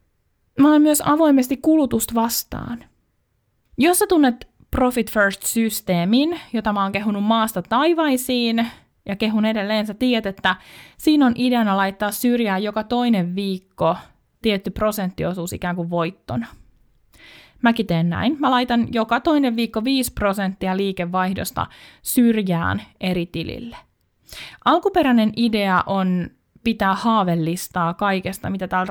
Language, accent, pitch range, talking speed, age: Finnish, native, 185-245 Hz, 120 wpm, 20-39